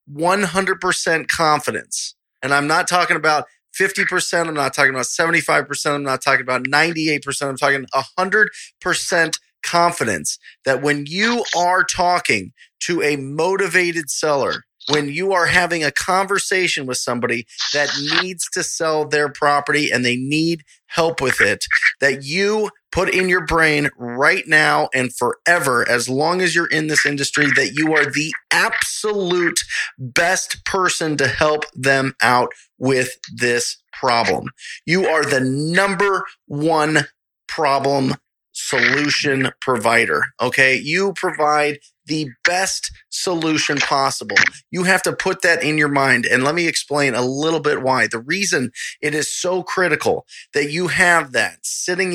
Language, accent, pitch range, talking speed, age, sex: English, American, 135-175 Hz, 140 wpm, 30-49, male